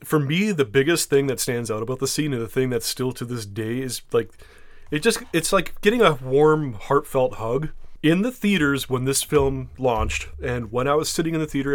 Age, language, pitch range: 30-49, English, 120-155 Hz